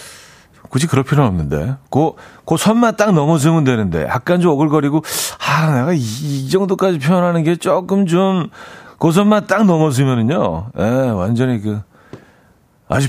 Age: 40-59